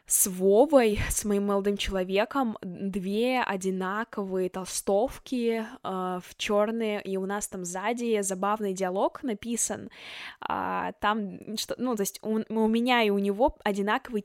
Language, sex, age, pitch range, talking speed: Russian, female, 10-29, 200-240 Hz, 140 wpm